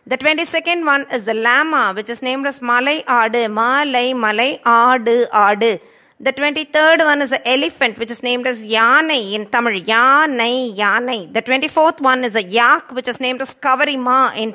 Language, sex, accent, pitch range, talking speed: Tamil, female, native, 235-285 Hz, 175 wpm